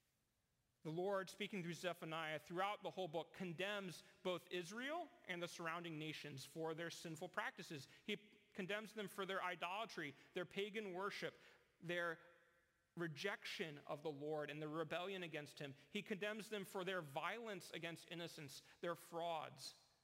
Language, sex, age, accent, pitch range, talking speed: English, male, 40-59, American, 150-200 Hz, 145 wpm